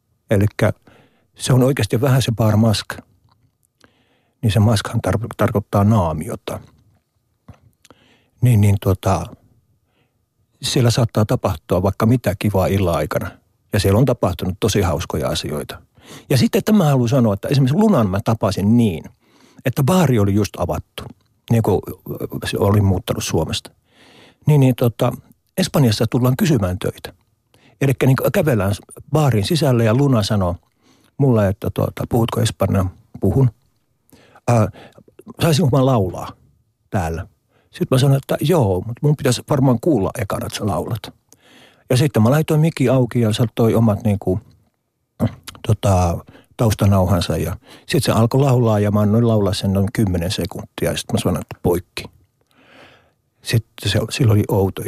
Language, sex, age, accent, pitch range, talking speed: Finnish, male, 60-79, native, 100-130 Hz, 140 wpm